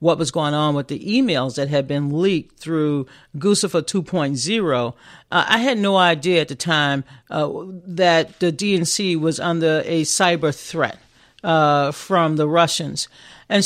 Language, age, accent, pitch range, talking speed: English, 50-69, American, 150-185 Hz, 155 wpm